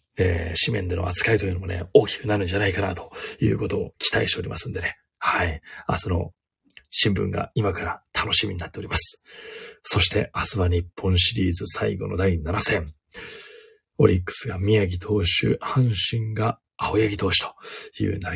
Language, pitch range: Japanese, 95-130 Hz